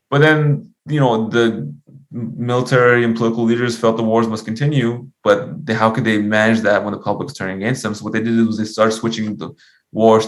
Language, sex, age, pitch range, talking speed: English, male, 20-39, 105-120 Hz, 215 wpm